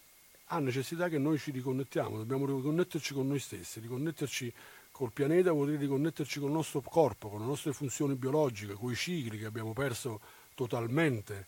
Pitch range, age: 115-150 Hz, 50-69